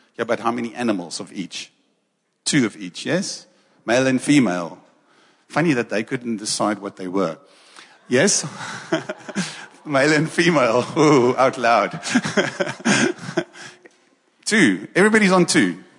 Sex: male